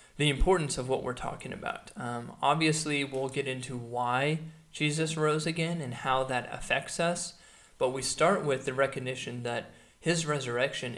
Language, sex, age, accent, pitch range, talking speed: English, male, 20-39, American, 130-160 Hz, 165 wpm